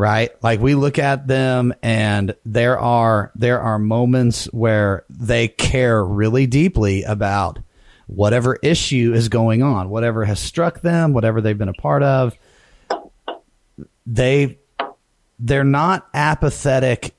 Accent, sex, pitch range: American, male, 110-135 Hz